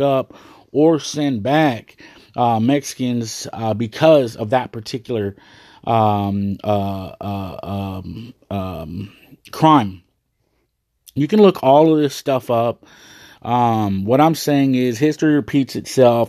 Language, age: English, 30-49